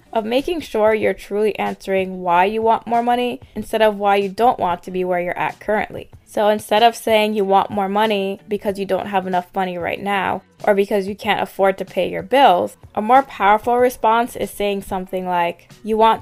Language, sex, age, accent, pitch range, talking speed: English, female, 20-39, American, 185-220 Hz, 215 wpm